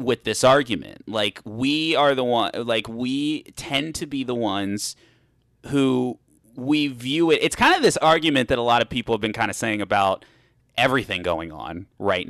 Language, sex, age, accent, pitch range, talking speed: English, male, 30-49, American, 100-130 Hz, 190 wpm